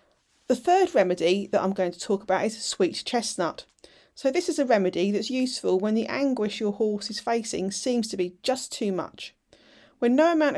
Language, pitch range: English, 195-250 Hz